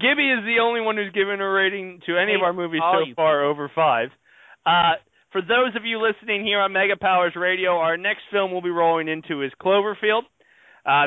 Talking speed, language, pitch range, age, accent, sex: 210 wpm, English, 150-200 Hz, 20-39, American, male